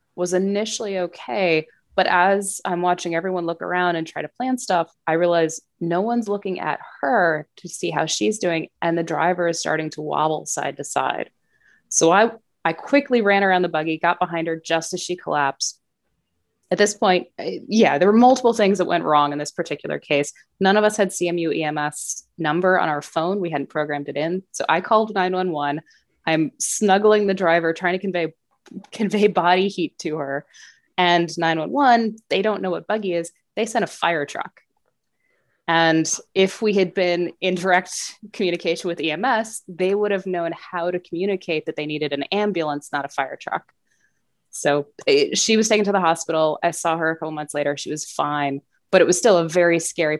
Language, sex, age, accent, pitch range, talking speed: English, female, 20-39, American, 160-190 Hz, 190 wpm